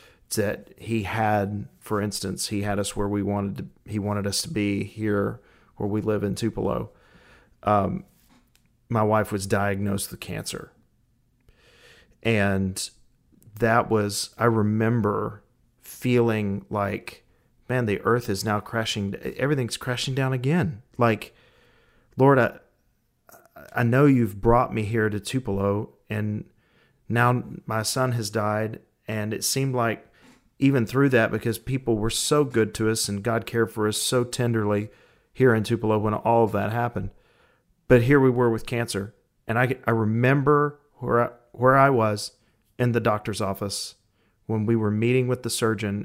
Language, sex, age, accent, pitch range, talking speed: English, male, 40-59, American, 105-120 Hz, 155 wpm